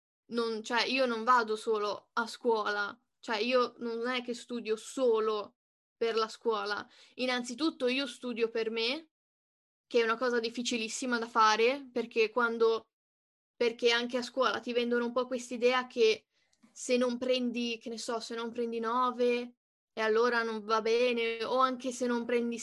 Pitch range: 230-270 Hz